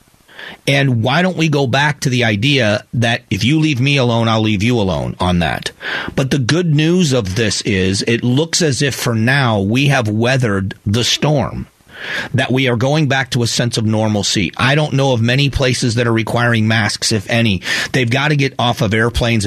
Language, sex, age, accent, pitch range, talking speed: English, male, 40-59, American, 115-140 Hz, 210 wpm